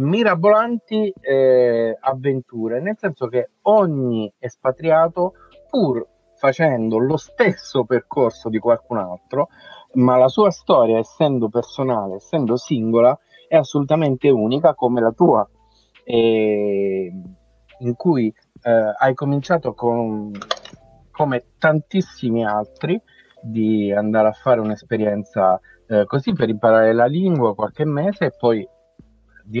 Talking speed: 115 wpm